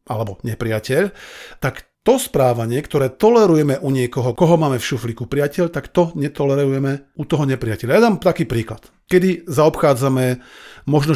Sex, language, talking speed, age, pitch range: male, Slovak, 145 wpm, 40-59, 125-195 Hz